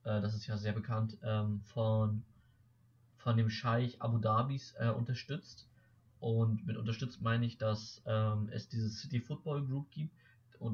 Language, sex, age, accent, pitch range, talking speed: German, male, 20-39, German, 110-125 Hz, 155 wpm